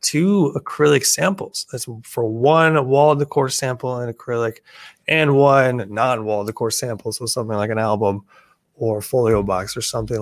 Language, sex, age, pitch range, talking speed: English, male, 20-39, 115-150 Hz, 175 wpm